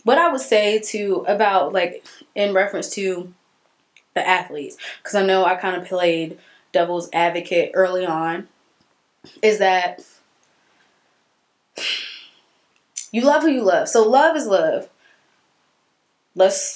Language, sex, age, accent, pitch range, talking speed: English, female, 20-39, American, 180-235 Hz, 125 wpm